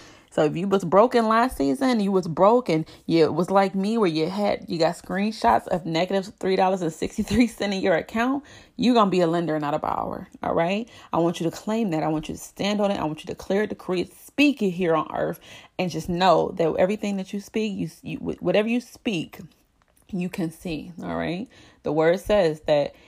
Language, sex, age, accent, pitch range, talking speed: English, female, 30-49, American, 170-210 Hz, 225 wpm